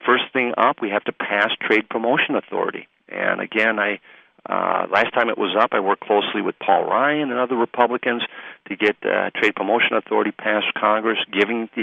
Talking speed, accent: 195 wpm, American